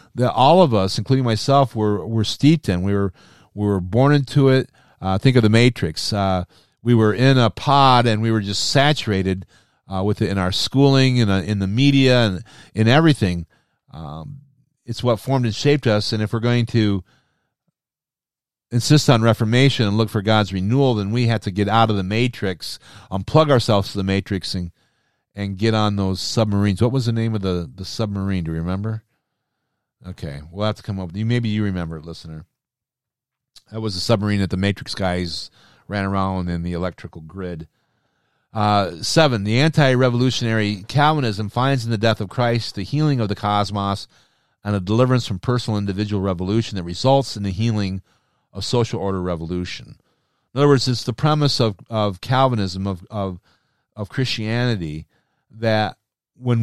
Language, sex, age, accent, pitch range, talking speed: English, male, 40-59, American, 100-125 Hz, 180 wpm